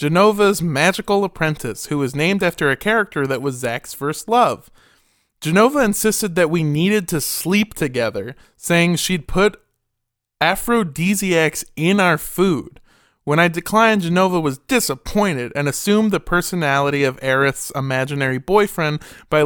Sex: male